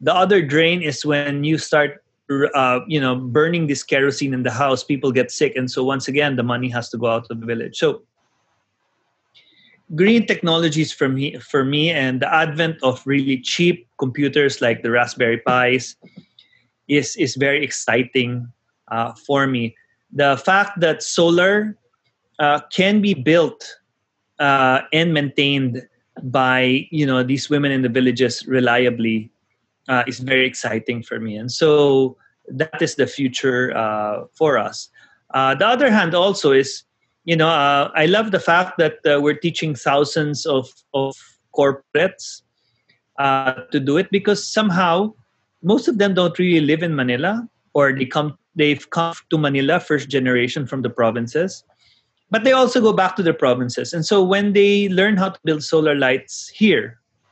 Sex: male